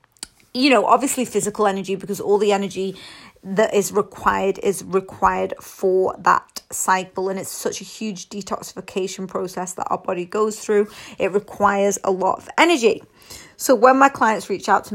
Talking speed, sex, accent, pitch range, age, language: 170 wpm, female, British, 195-235 Hz, 30-49, English